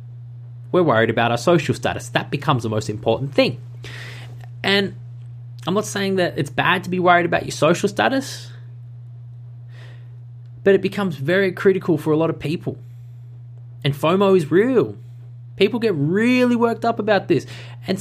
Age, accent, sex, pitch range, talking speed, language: 20-39, Australian, male, 120-175 Hz, 160 wpm, English